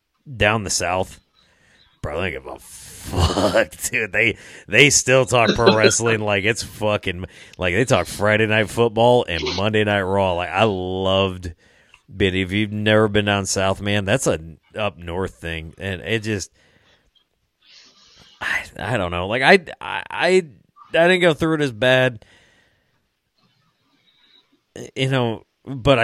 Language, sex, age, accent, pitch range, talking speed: English, male, 30-49, American, 100-130 Hz, 150 wpm